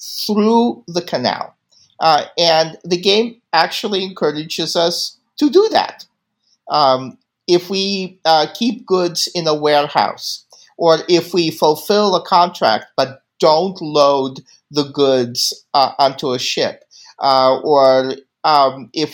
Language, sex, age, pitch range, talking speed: English, male, 50-69, 130-180 Hz, 130 wpm